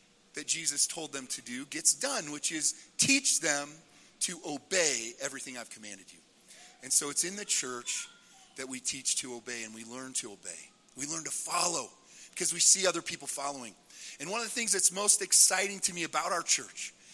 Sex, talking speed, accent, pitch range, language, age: male, 200 wpm, American, 140-200 Hz, English, 40-59